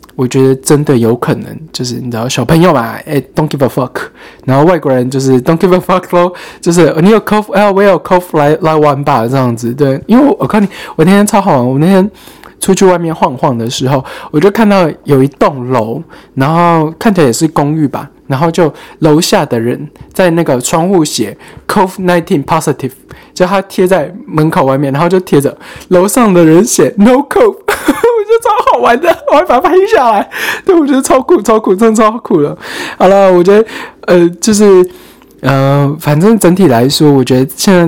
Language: Chinese